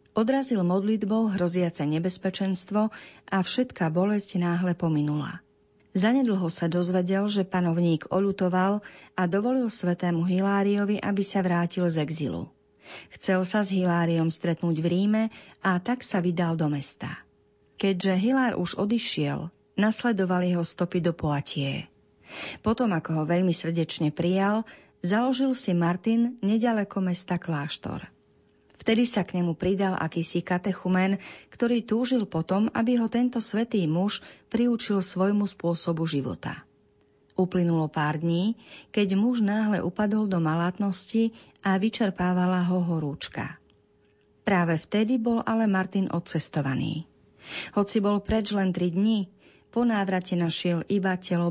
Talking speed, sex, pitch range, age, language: 125 wpm, female, 170-210 Hz, 40-59, Slovak